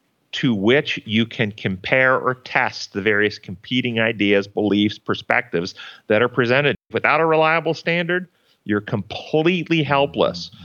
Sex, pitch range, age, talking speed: male, 115-150 Hz, 40-59, 130 wpm